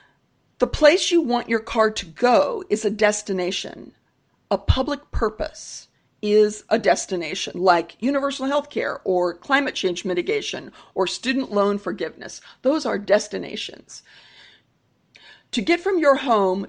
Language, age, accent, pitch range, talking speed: English, 50-69, American, 200-270 Hz, 135 wpm